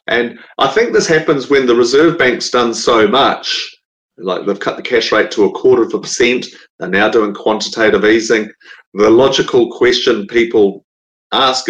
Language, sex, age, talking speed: English, male, 40-59, 175 wpm